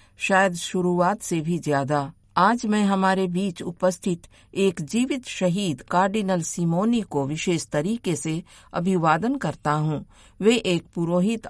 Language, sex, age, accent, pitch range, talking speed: Hindi, female, 50-69, native, 160-210 Hz, 130 wpm